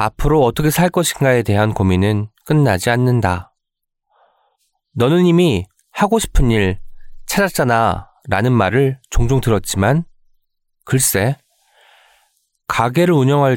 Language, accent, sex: Korean, native, male